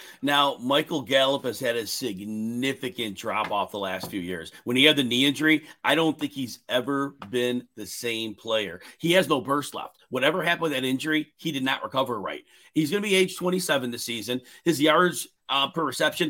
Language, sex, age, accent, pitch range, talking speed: English, male, 40-59, American, 135-170 Hz, 205 wpm